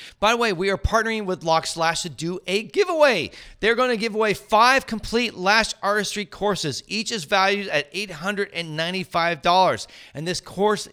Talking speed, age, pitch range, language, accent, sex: 160 wpm, 40-59, 150-205 Hz, English, American, male